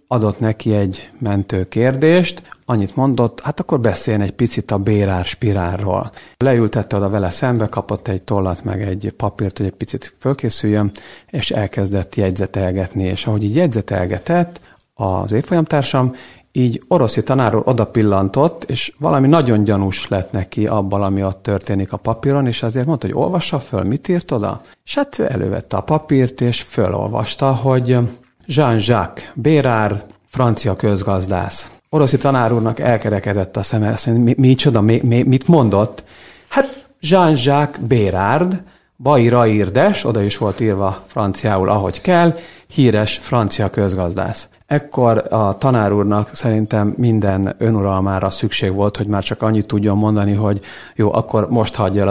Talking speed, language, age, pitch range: 145 wpm, Hungarian, 50-69, 100-130 Hz